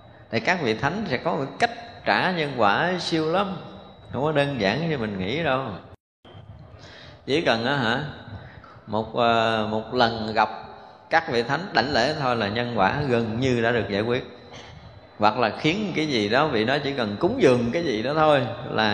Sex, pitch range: male, 110-150 Hz